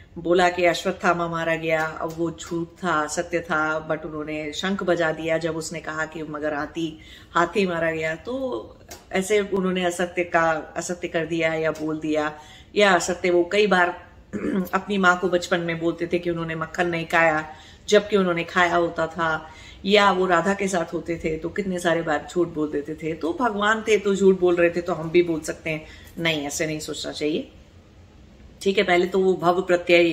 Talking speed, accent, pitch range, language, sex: 130 wpm, Indian, 160-185 Hz, English, female